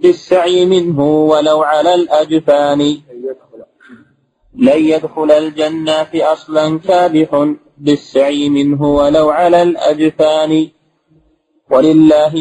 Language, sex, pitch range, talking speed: Arabic, male, 150-175 Hz, 75 wpm